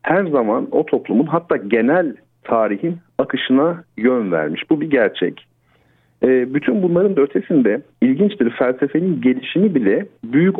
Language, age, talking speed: Turkish, 50-69, 125 wpm